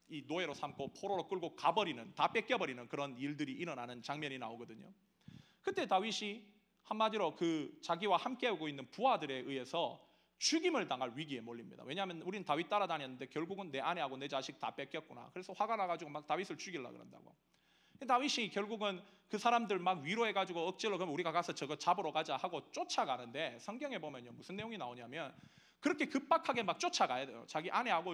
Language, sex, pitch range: Korean, male, 155-240 Hz